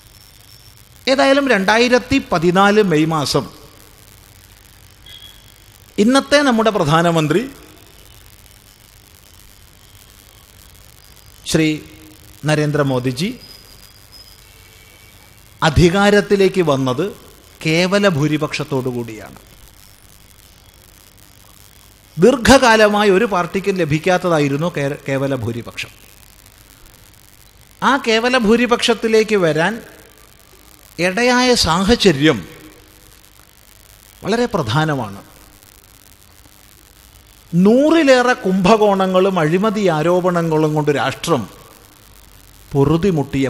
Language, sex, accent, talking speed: Malayalam, male, native, 50 wpm